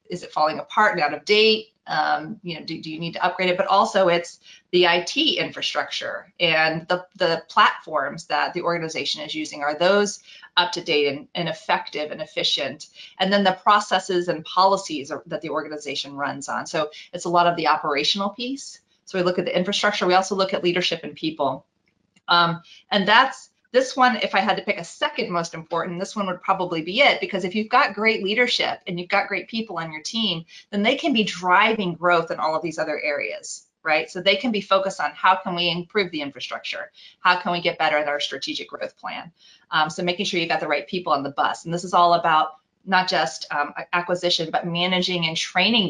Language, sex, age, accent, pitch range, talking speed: English, female, 30-49, American, 165-200 Hz, 220 wpm